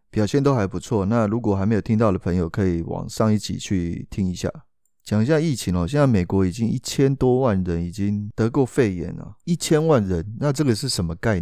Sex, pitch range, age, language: male, 95-120 Hz, 20-39, Chinese